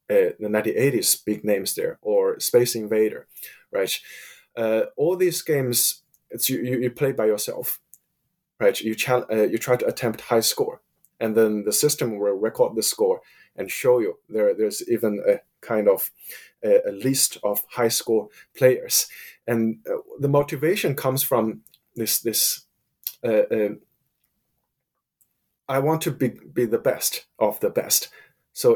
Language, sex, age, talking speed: English, male, 20-39, 160 wpm